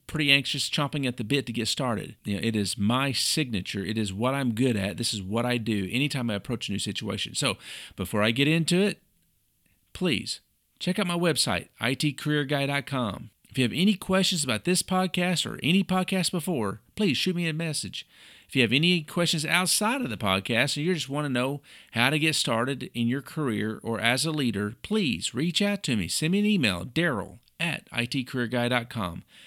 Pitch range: 115-165 Hz